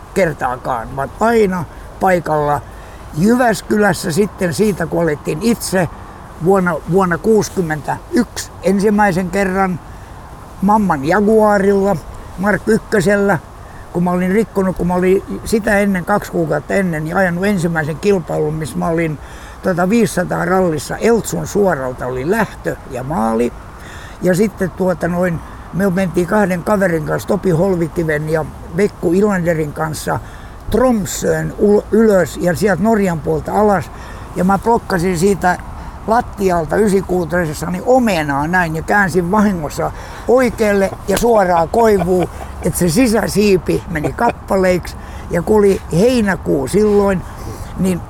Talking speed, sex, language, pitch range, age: 115 wpm, male, Finnish, 160-205 Hz, 60-79